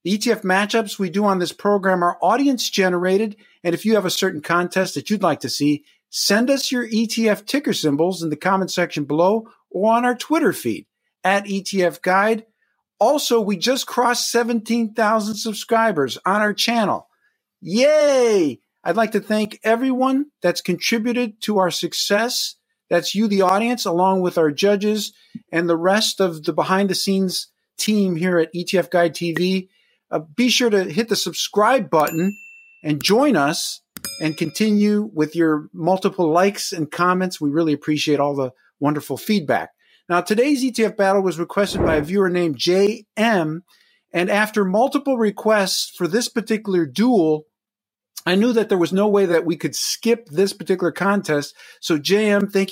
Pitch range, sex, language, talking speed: 175-225 Hz, male, English, 165 wpm